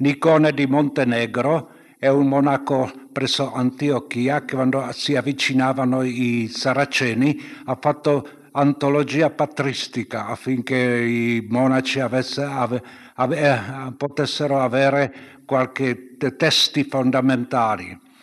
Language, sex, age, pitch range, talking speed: Italian, male, 70-89, 125-150 Hz, 100 wpm